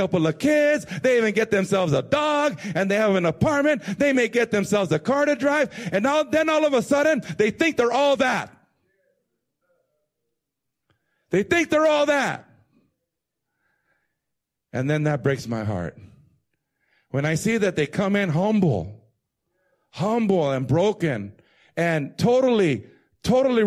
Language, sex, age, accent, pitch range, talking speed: English, male, 50-69, American, 160-250 Hz, 145 wpm